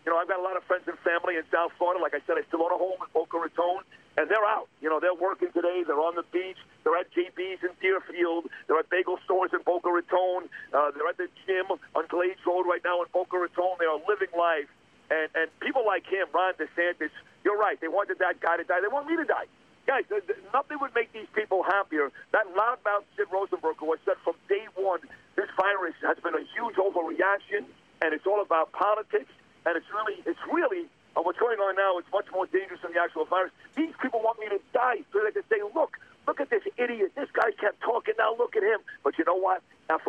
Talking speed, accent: 245 wpm, American